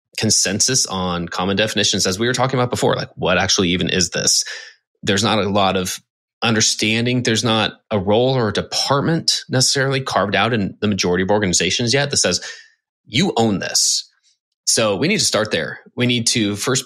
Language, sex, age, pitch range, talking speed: English, male, 20-39, 95-130 Hz, 190 wpm